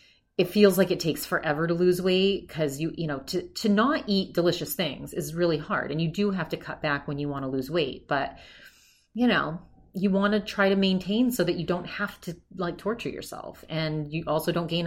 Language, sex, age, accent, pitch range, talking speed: English, female, 30-49, American, 150-195 Hz, 235 wpm